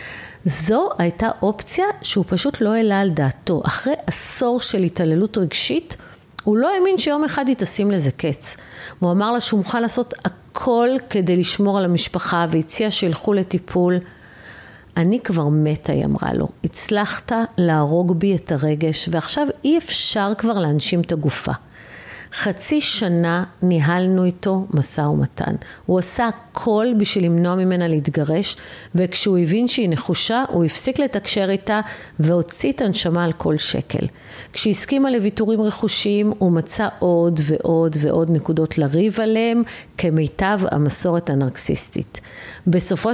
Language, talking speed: Hebrew, 140 wpm